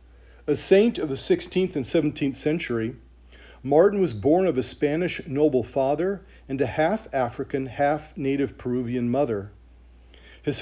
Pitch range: 100-160 Hz